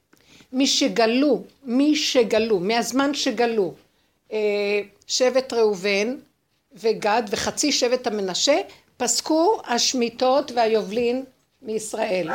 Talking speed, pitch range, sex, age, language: 80 wpm, 225-280 Hz, female, 60-79, Hebrew